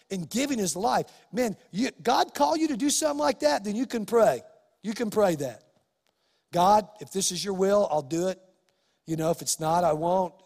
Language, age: English, 50-69